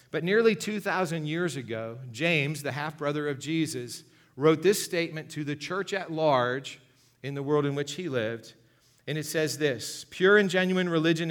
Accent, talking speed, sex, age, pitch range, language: American, 175 wpm, male, 40-59, 130-160 Hz, English